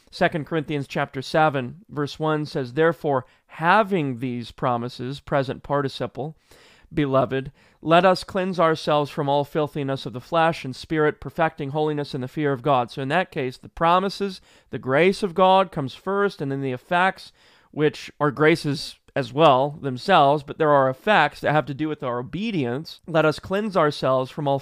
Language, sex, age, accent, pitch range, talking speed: English, male, 30-49, American, 140-175 Hz, 175 wpm